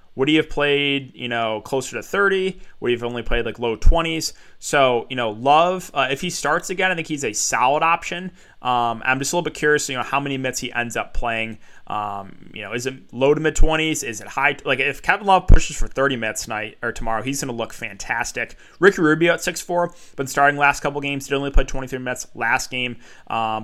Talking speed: 240 wpm